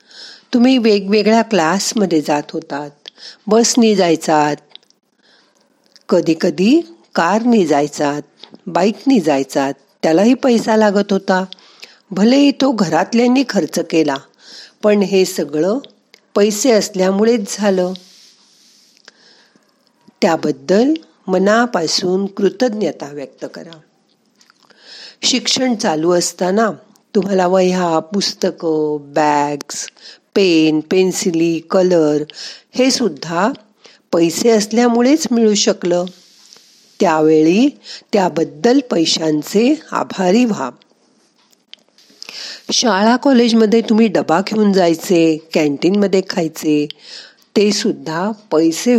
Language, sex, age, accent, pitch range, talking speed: Marathi, female, 50-69, native, 160-225 Hz, 75 wpm